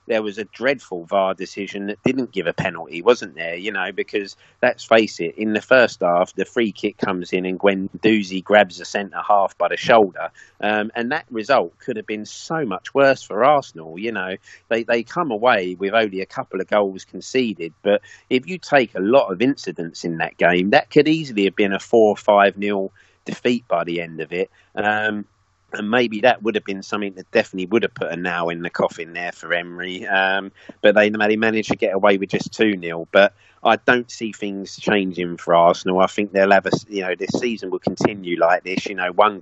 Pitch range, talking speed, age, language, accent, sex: 95-110 Hz, 225 wpm, 40-59, English, British, male